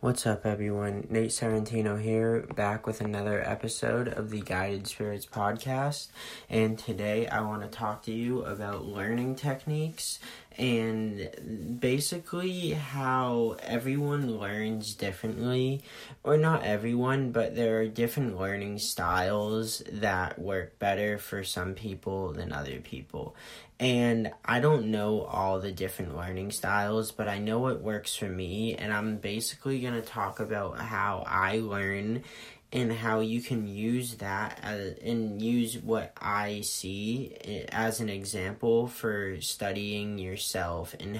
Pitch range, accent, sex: 100-115 Hz, American, male